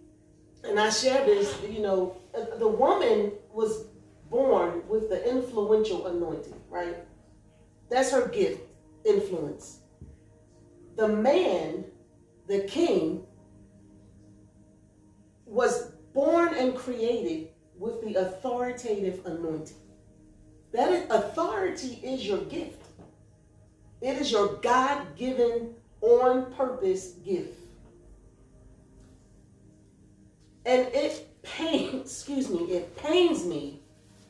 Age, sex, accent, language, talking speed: 40-59, female, American, English, 85 wpm